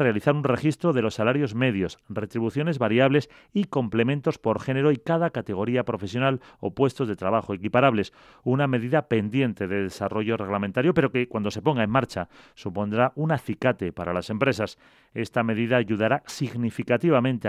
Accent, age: Spanish, 40-59